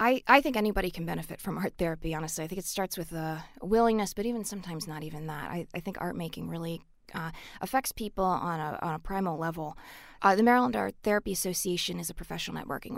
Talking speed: 220 wpm